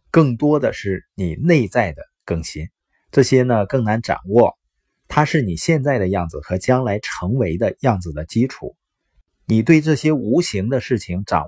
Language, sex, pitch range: Chinese, male, 95-140 Hz